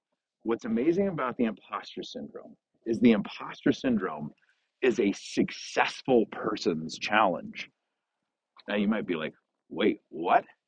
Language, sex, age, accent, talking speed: English, male, 50-69, American, 125 wpm